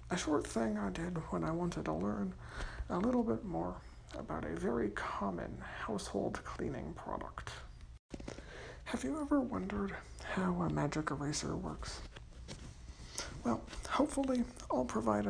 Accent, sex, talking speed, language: American, male, 135 wpm, English